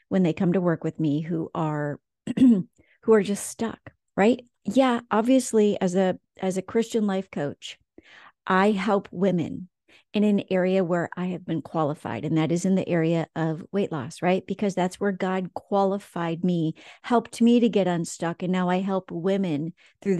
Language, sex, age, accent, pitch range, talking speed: English, female, 40-59, American, 180-215 Hz, 180 wpm